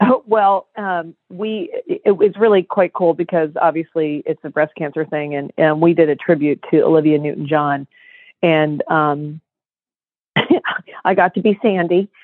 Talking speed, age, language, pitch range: 160 wpm, 40-59, English, 155-195 Hz